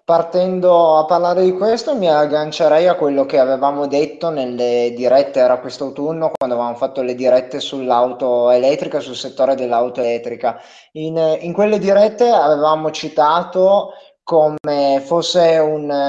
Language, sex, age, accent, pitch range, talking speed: Italian, male, 20-39, native, 130-175 Hz, 140 wpm